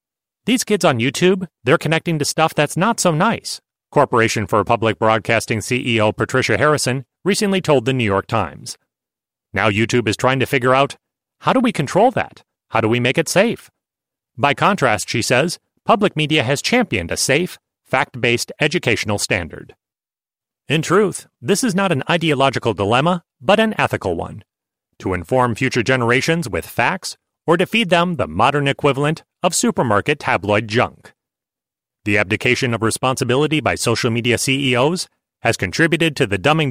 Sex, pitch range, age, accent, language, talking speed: male, 115-160 Hz, 30-49, American, English, 160 wpm